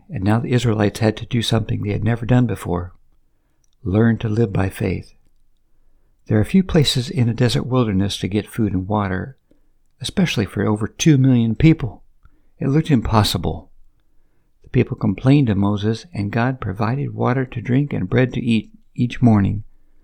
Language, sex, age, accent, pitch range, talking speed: English, male, 60-79, American, 100-125 Hz, 170 wpm